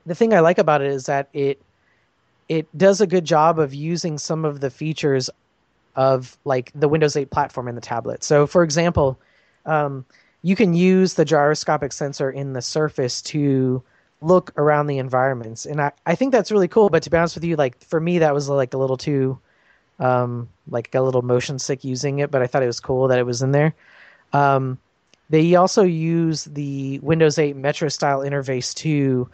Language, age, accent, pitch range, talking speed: English, 30-49, American, 130-160 Hz, 200 wpm